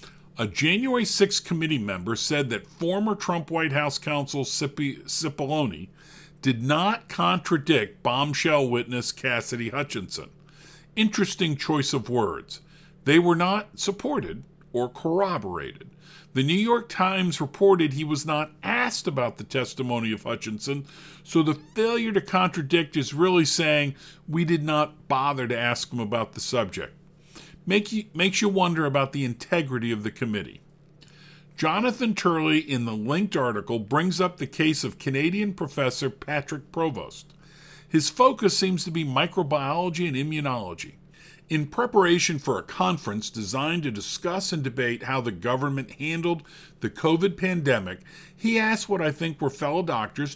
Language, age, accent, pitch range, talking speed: English, 50-69, American, 135-175 Hz, 140 wpm